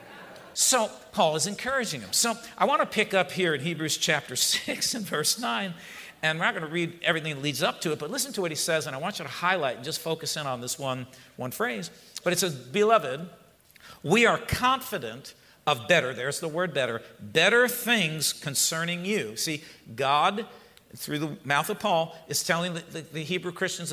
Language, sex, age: English, male, 50-69